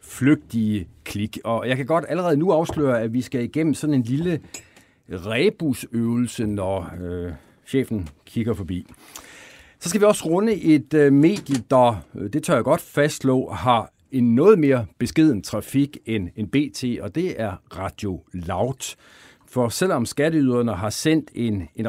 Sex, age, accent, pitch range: male, 60-79, native, 105-145 Hz